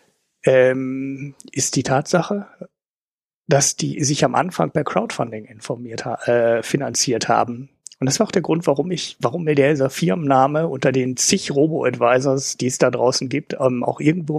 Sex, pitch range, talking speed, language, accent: male, 125-155 Hz, 165 wpm, German, German